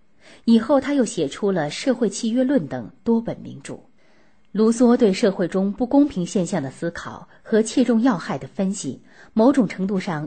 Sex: female